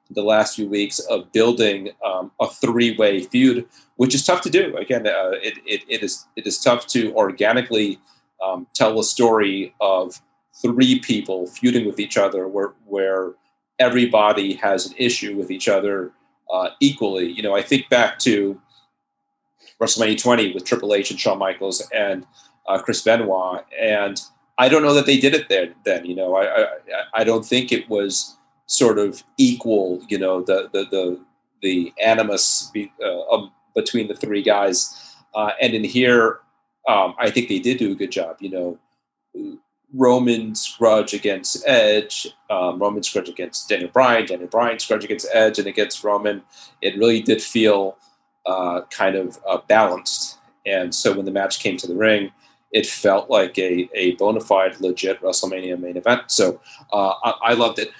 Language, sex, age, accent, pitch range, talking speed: English, male, 40-59, American, 95-125 Hz, 175 wpm